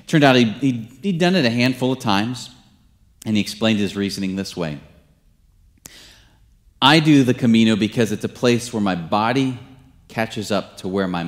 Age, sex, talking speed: 30-49, male, 175 wpm